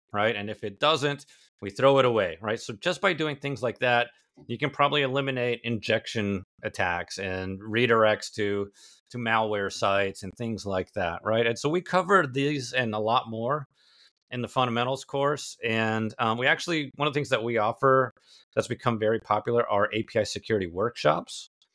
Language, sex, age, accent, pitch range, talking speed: English, male, 30-49, American, 105-130 Hz, 180 wpm